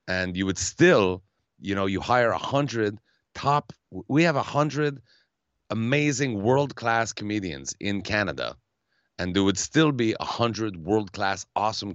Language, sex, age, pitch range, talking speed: English, male, 30-49, 90-125 Hz, 145 wpm